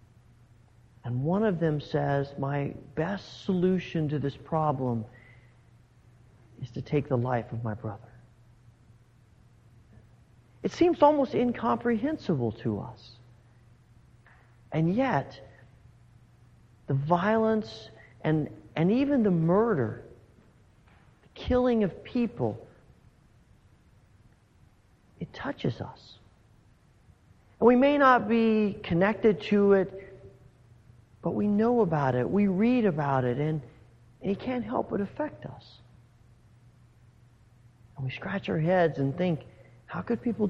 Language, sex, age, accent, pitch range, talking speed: English, male, 50-69, American, 120-185 Hz, 110 wpm